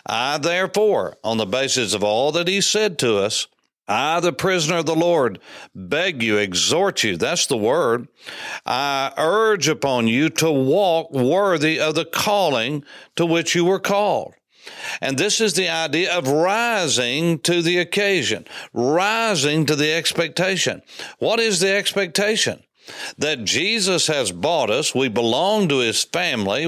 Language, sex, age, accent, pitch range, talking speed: English, male, 60-79, American, 145-180 Hz, 155 wpm